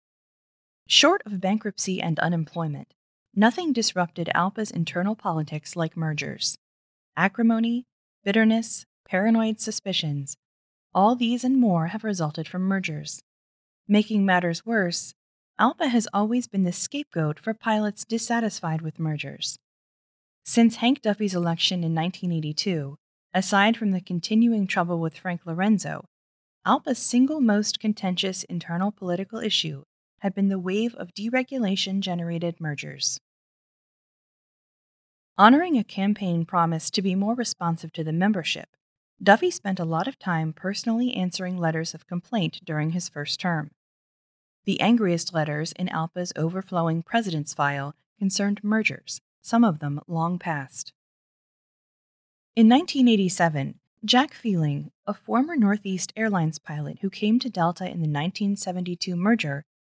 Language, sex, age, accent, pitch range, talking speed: English, female, 20-39, American, 165-215 Hz, 125 wpm